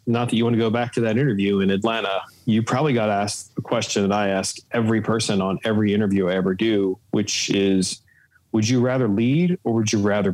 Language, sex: English, male